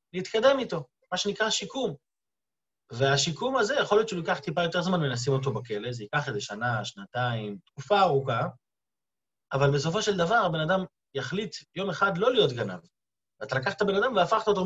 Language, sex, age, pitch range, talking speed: Hebrew, male, 30-49, 130-195 Hz, 170 wpm